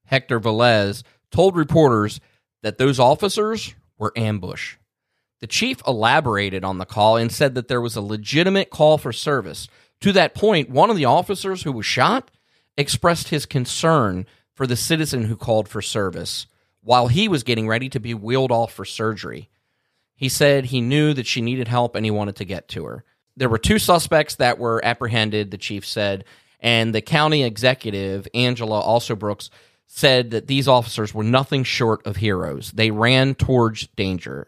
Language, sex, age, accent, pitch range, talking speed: English, male, 30-49, American, 110-140 Hz, 175 wpm